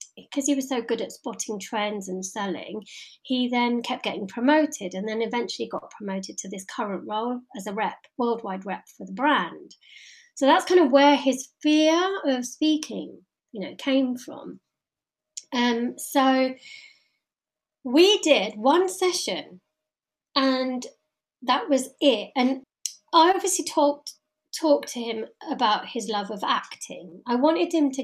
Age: 30-49